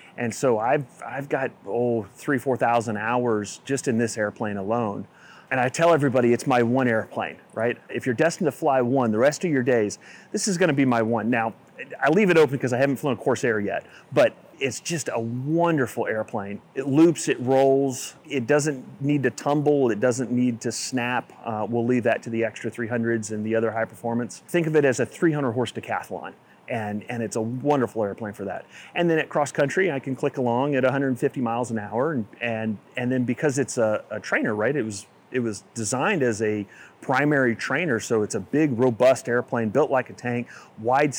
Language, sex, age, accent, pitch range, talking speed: English, male, 30-49, American, 115-135 Hz, 210 wpm